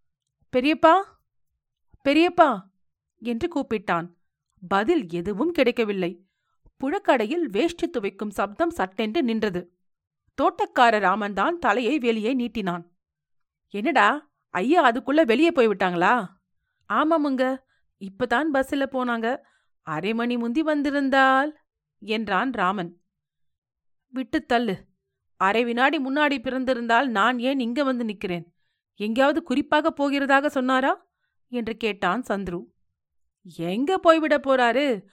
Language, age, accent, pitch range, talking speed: Tamil, 40-59, native, 200-285 Hz, 90 wpm